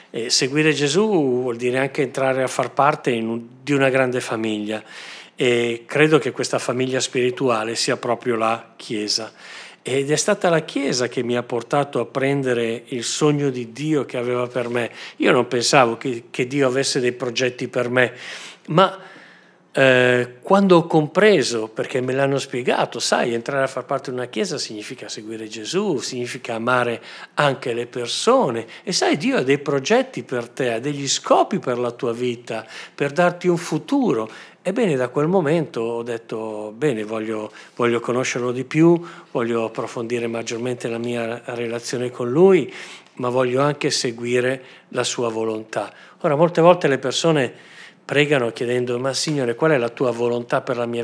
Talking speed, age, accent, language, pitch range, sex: 165 wpm, 50-69, native, Italian, 120-145 Hz, male